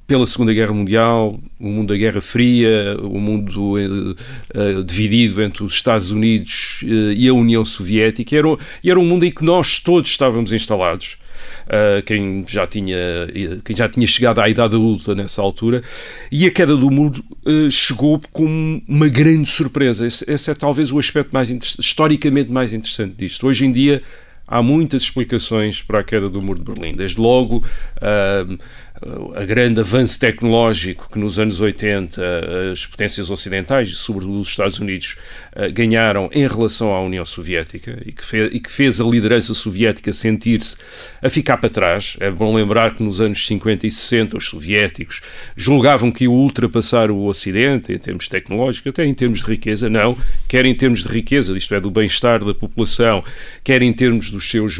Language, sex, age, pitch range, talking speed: Portuguese, male, 40-59, 105-125 Hz, 180 wpm